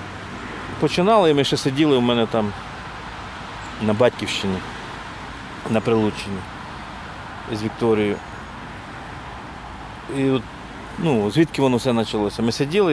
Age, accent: 40-59, native